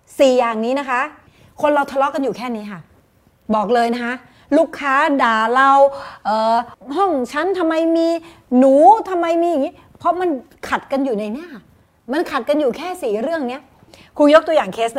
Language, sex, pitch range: Thai, female, 220-300 Hz